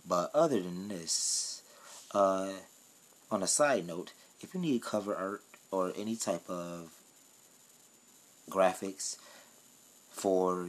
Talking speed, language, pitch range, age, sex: 110 wpm, English, 85-100 Hz, 30-49, male